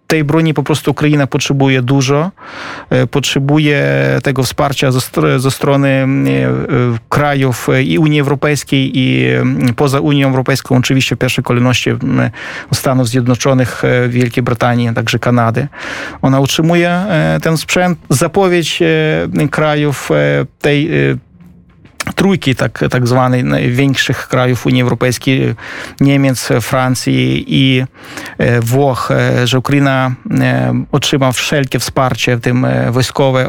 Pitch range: 125-145 Hz